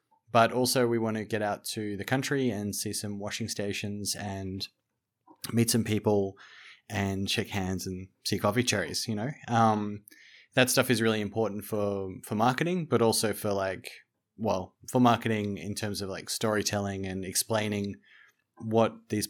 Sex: male